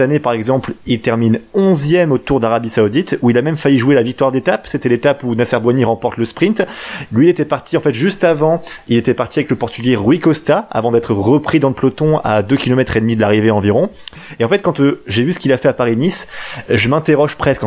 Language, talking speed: French, 250 wpm